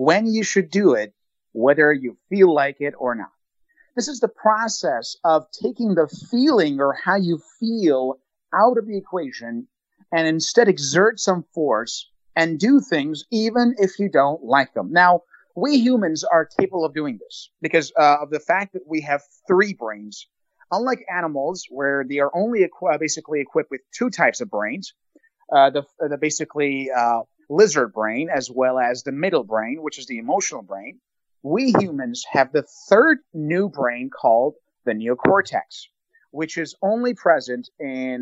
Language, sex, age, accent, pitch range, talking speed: English, male, 30-49, American, 140-195 Hz, 165 wpm